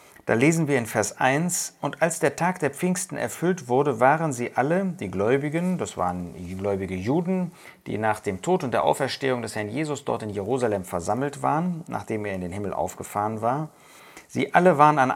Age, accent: 40-59, German